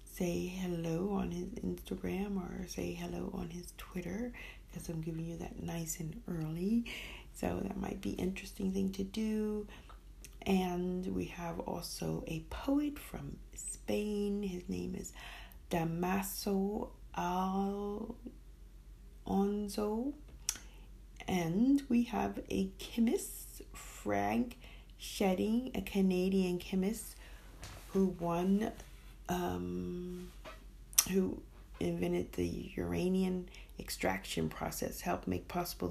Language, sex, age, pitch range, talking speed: English, female, 40-59, 165-215 Hz, 105 wpm